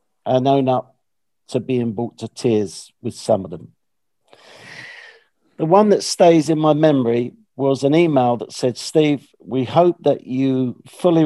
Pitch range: 125-160 Hz